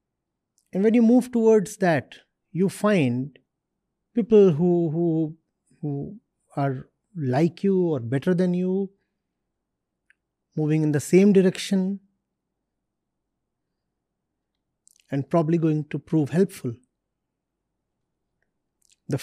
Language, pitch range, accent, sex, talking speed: English, 145-195 Hz, Indian, male, 95 wpm